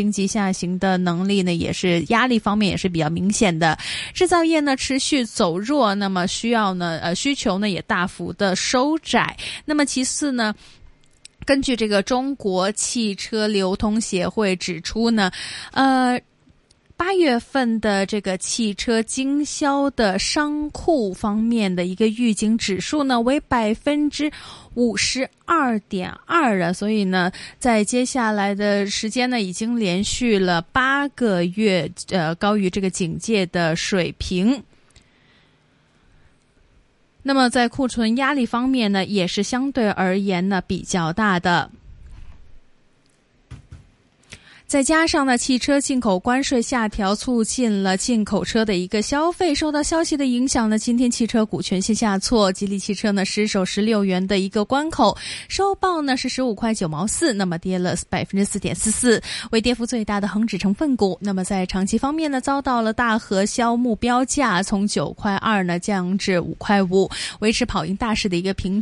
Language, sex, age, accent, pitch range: Chinese, female, 20-39, native, 195-255 Hz